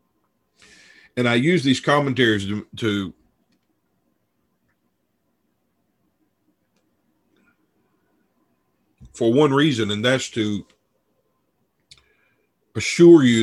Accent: American